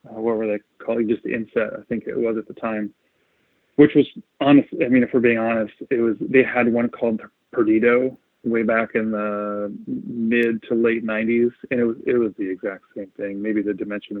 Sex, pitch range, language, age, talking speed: male, 110-125 Hz, English, 30-49, 215 wpm